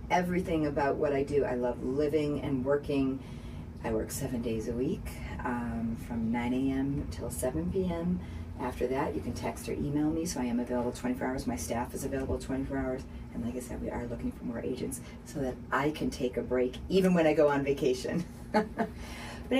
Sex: female